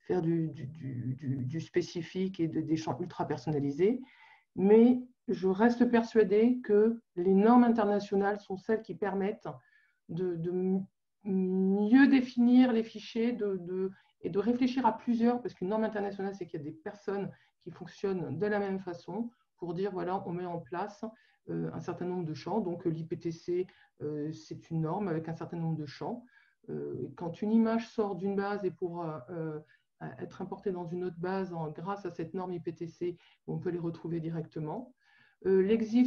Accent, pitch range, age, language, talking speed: French, 170-215 Hz, 50-69, French, 175 wpm